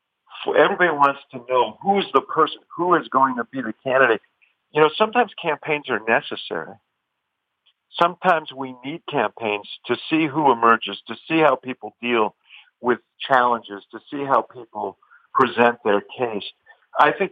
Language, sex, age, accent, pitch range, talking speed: English, male, 50-69, American, 110-145 Hz, 150 wpm